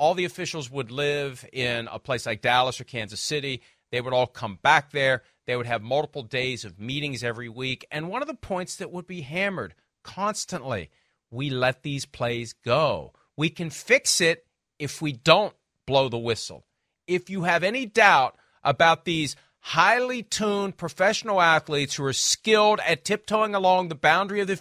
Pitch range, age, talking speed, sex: 135-190 Hz, 40-59, 180 wpm, male